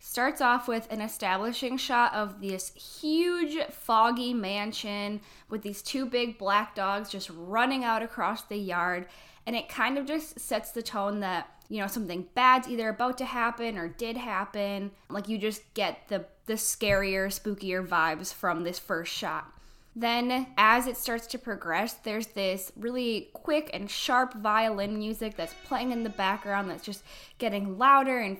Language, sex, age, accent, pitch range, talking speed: English, female, 10-29, American, 195-240 Hz, 170 wpm